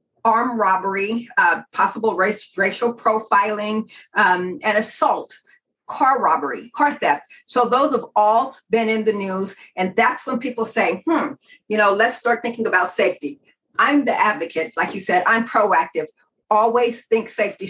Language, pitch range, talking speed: English, 195-235 Hz, 155 wpm